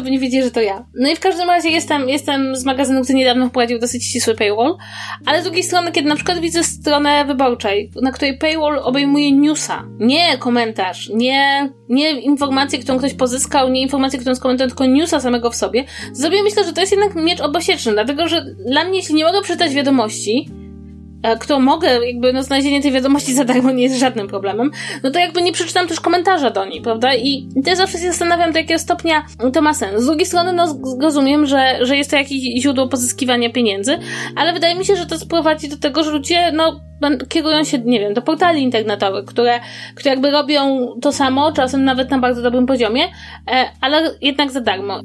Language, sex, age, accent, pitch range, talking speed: Polish, female, 20-39, native, 250-320 Hz, 205 wpm